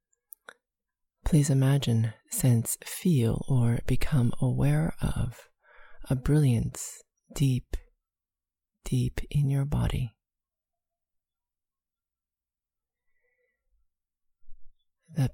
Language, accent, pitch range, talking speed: English, American, 90-150 Hz, 65 wpm